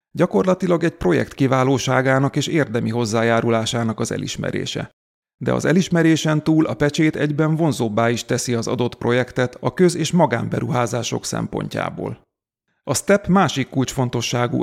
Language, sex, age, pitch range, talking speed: Hungarian, male, 30-49, 120-150 Hz, 125 wpm